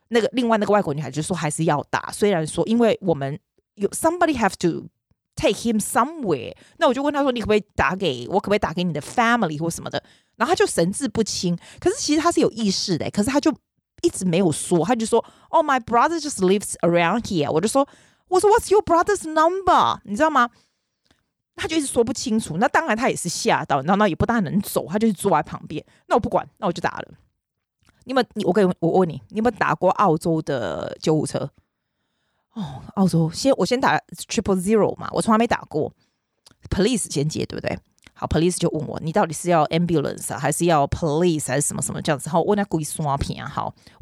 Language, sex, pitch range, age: Chinese, female, 170-240 Hz, 30-49